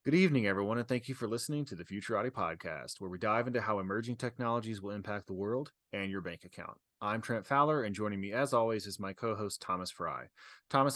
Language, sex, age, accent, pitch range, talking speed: English, male, 30-49, American, 105-130 Hz, 225 wpm